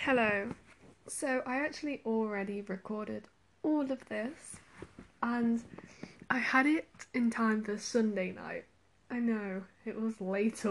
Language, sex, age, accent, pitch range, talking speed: English, female, 10-29, British, 220-270 Hz, 130 wpm